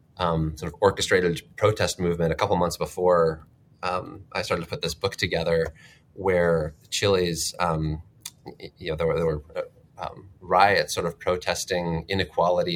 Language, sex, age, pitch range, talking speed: English, male, 30-49, 80-90 Hz, 155 wpm